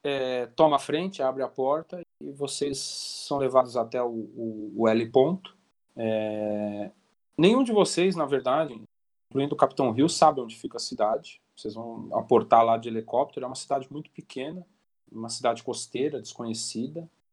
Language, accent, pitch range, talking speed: Portuguese, Brazilian, 115-170 Hz, 165 wpm